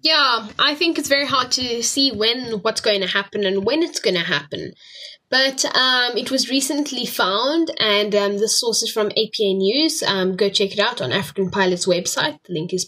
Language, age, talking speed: English, 10-29, 210 wpm